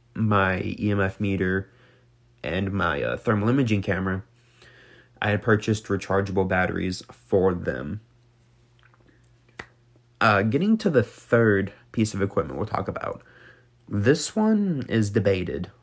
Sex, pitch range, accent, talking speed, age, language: male, 100-120 Hz, American, 120 wpm, 30-49, English